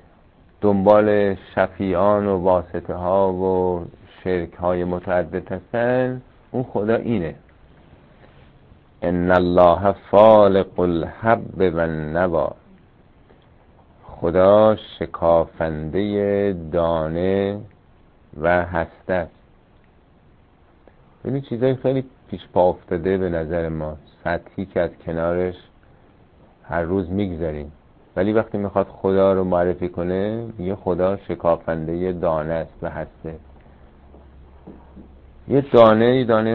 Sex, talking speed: male, 95 wpm